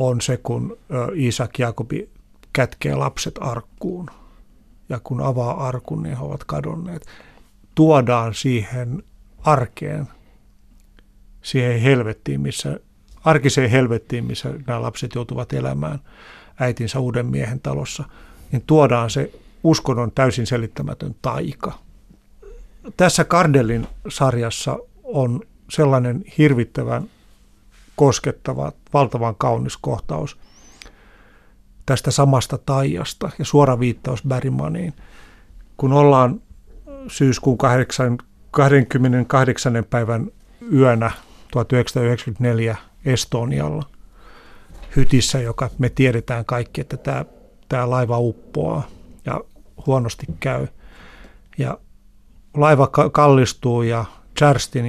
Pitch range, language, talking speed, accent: 115-140 Hz, Finnish, 90 wpm, native